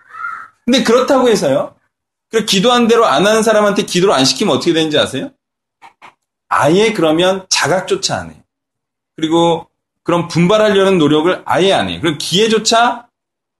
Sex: male